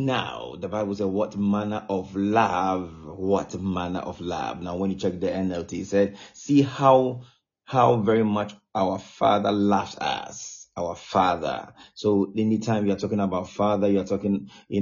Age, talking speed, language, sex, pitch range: 30-49, 175 wpm, English, male, 95-110 Hz